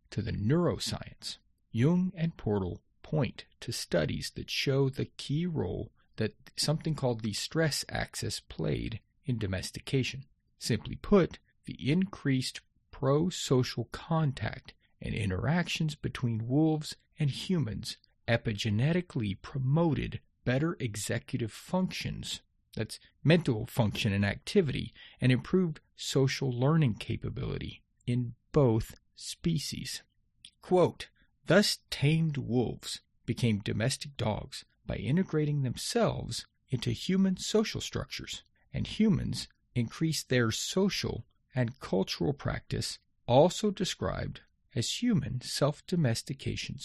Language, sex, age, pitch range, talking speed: English, male, 40-59, 115-155 Hz, 105 wpm